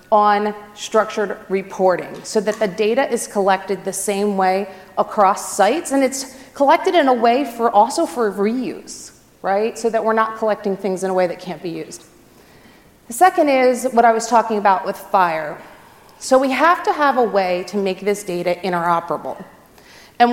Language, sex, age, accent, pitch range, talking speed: English, female, 30-49, American, 185-235 Hz, 180 wpm